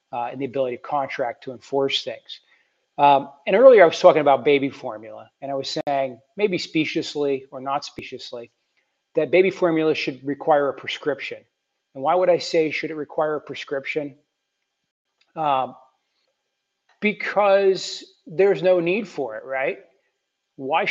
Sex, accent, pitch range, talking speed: male, American, 135-165 Hz, 150 wpm